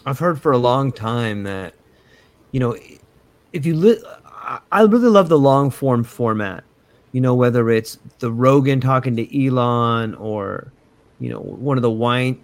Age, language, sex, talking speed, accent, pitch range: 30-49, English, male, 170 wpm, American, 125-175 Hz